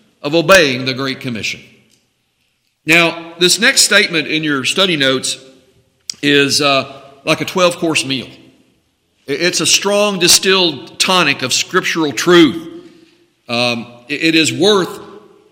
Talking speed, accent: 120 wpm, American